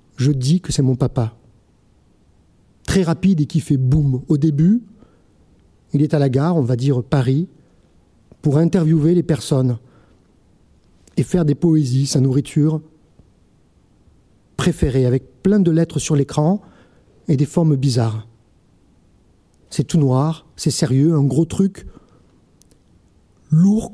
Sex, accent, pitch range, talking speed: male, French, 120-165 Hz, 135 wpm